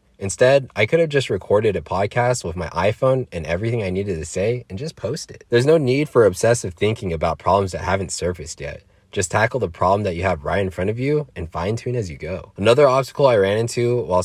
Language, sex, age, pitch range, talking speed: English, male, 20-39, 85-120 Hz, 240 wpm